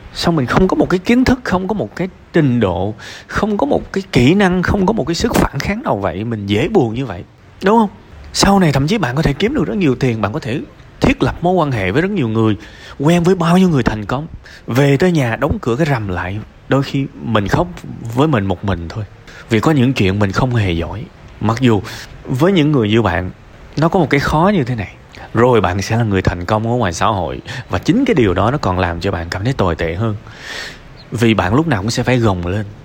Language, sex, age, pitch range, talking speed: Vietnamese, male, 20-39, 100-145 Hz, 260 wpm